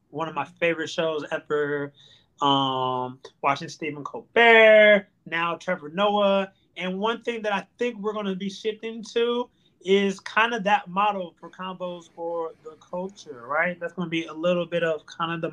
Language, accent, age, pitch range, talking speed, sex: English, American, 20-39, 160-200 Hz, 180 wpm, male